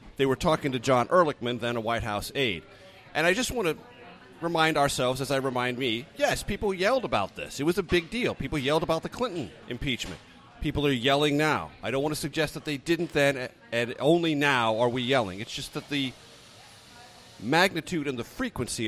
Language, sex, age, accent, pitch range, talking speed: English, male, 40-59, American, 115-145 Hz, 205 wpm